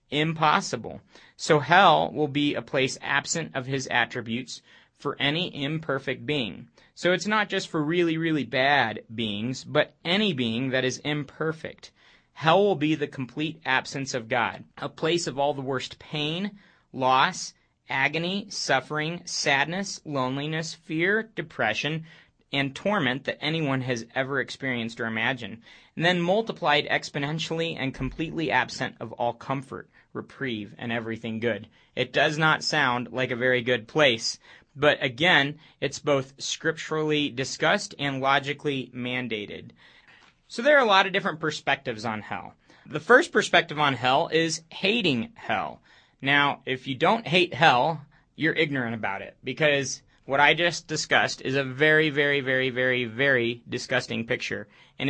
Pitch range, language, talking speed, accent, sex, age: 130-160 Hz, English, 150 wpm, American, male, 30-49